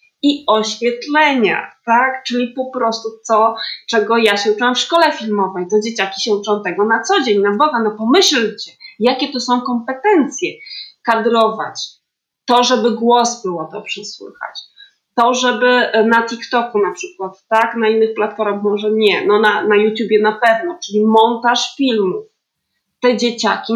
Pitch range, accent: 215-265 Hz, native